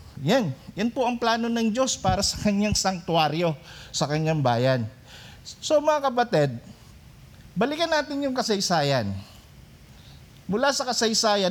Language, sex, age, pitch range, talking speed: Filipino, male, 50-69, 155-235 Hz, 125 wpm